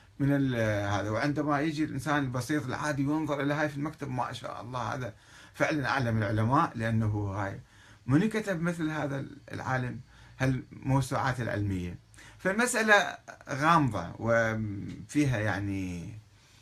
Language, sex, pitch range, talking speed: Arabic, male, 105-140 Hz, 115 wpm